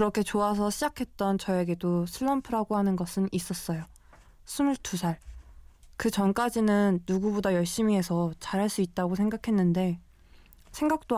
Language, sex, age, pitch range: Korean, female, 20-39, 175-215 Hz